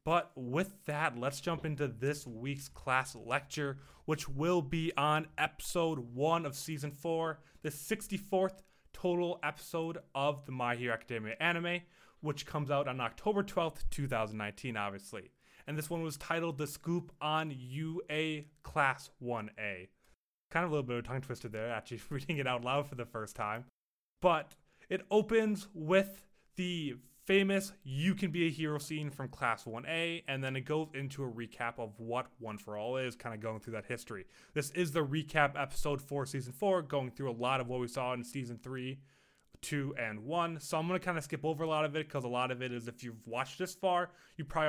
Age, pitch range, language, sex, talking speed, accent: 20-39, 120-165 Hz, English, male, 200 wpm, American